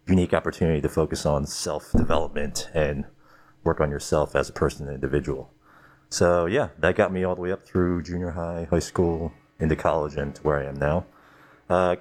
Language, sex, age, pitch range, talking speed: English, male, 40-59, 75-90 Hz, 190 wpm